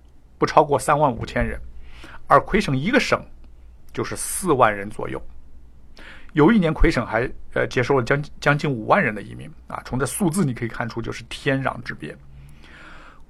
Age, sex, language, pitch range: 60-79, male, Chinese, 105-175 Hz